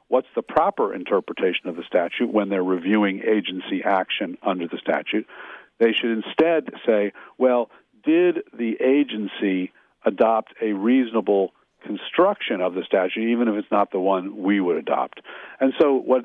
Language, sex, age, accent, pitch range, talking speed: English, male, 50-69, American, 100-125 Hz, 155 wpm